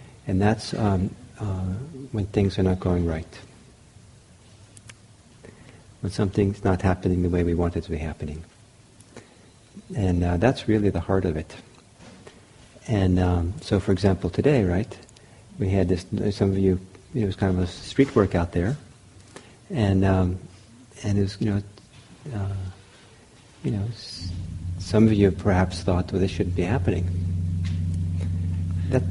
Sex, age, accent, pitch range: male, 50-69, American, 90-105 Hz